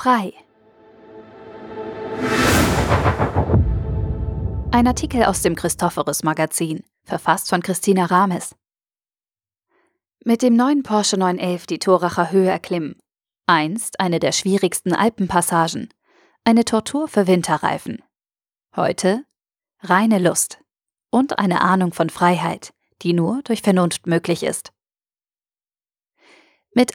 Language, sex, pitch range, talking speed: German, female, 170-225 Hz, 95 wpm